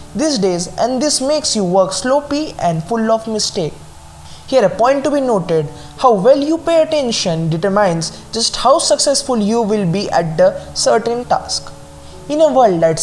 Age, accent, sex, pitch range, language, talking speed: 20-39, native, male, 165-245 Hz, Hindi, 175 wpm